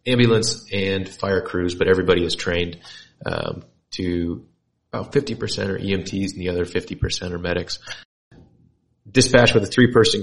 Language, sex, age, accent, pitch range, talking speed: English, male, 30-49, American, 90-110 Hz, 140 wpm